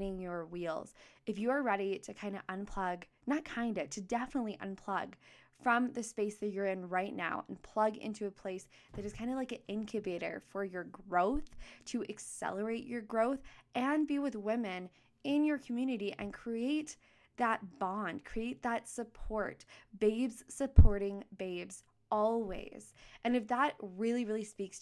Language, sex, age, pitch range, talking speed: English, female, 10-29, 195-230 Hz, 160 wpm